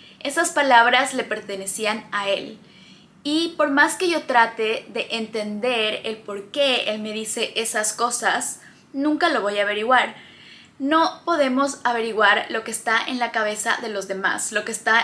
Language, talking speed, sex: Spanish, 170 wpm, female